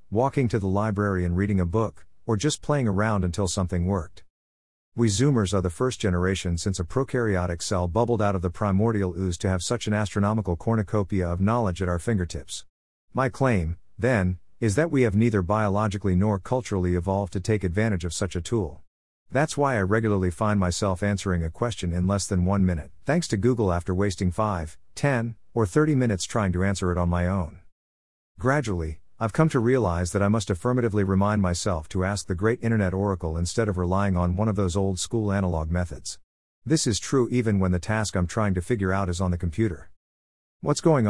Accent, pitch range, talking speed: American, 90-110 Hz, 200 wpm